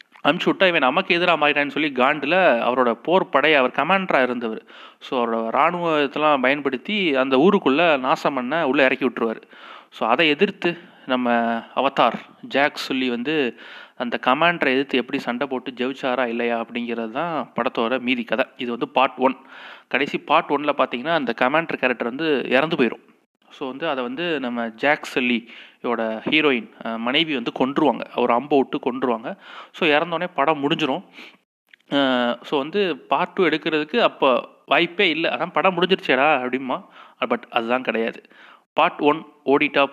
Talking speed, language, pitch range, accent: 150 wpm, Tamil, 125-150 Hz, native